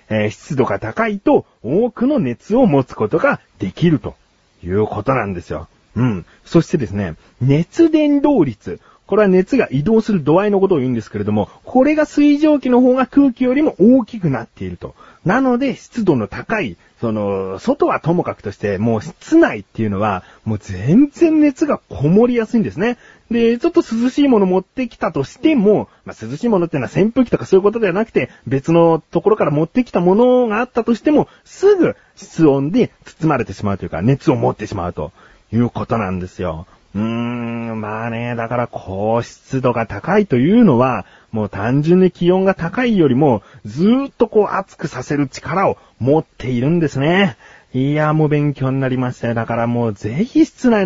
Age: 40-59